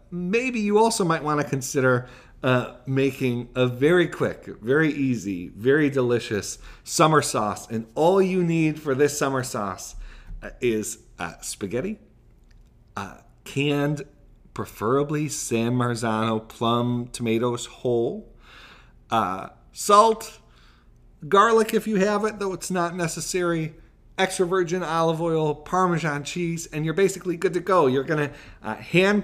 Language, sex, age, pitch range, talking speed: English, male, 40-59, 125-175 Hz, 135 wpm